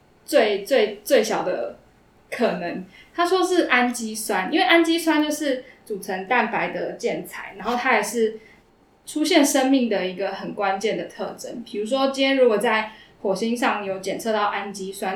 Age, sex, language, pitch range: 10-29, female, Chinese, 210-270 Hz